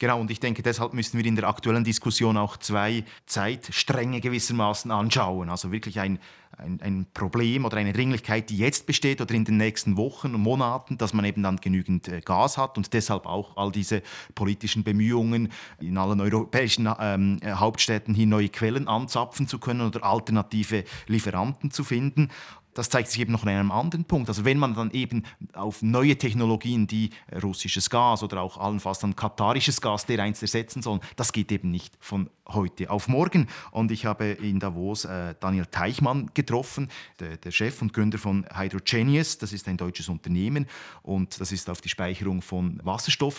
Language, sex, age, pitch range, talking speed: German, male, 30-49, 100-120 Hz, 180 wpm